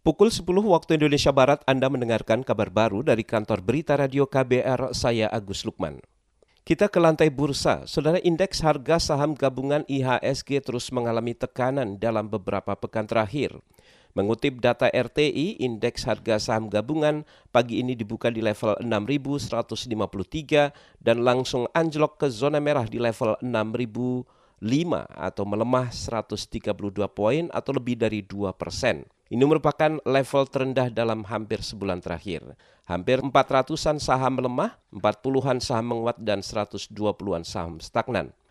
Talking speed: 130 wpm